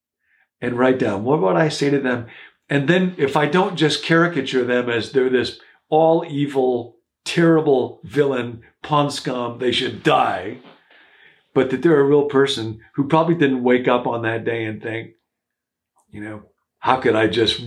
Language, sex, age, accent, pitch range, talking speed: English, male, 50-69, American, 115-150 Hz, 170 wpm